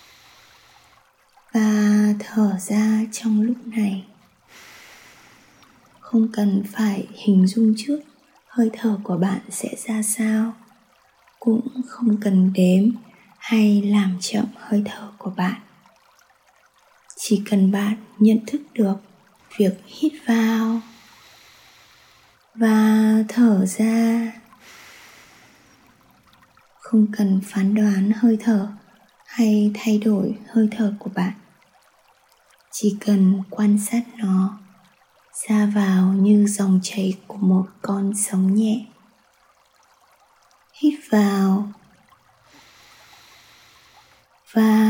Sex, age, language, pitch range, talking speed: female, 20-39, Vietnamese, 200-225 Hz, 100 wpm